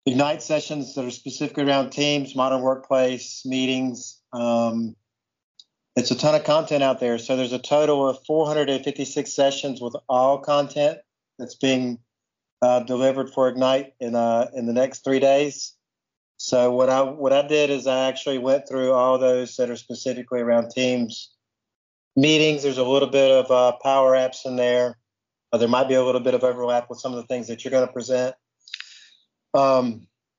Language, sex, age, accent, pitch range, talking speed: English, male, 50-69, American, 125-140 Hz, 180 wpm